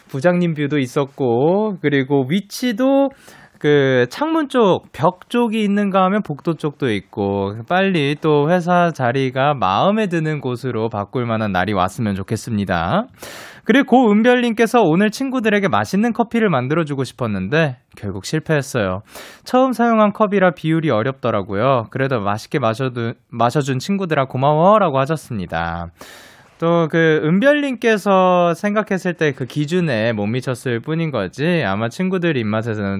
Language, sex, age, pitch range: Korean, male, 20-39, 120-190 Hz